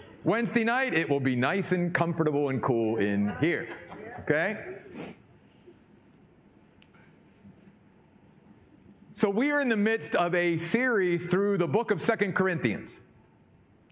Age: 50-69